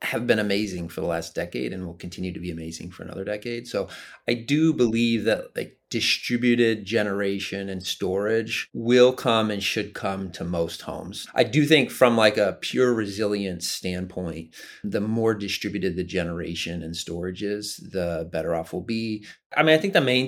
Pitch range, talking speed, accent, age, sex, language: 90-115 Hz, 185 wpm, American, 30-49, male, English